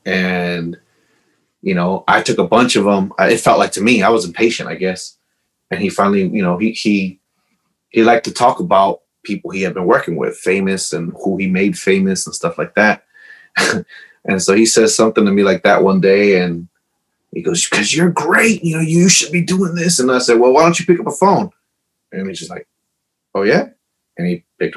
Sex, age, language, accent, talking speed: male, 30-49, English, American, 220 wpm